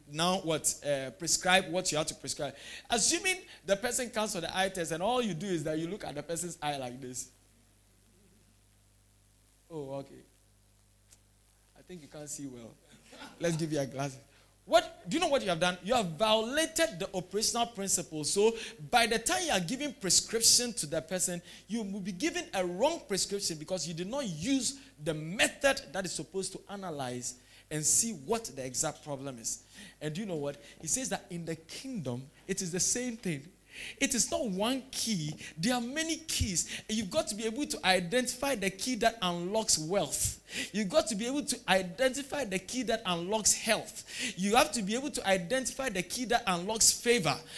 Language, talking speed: English, 195 wpm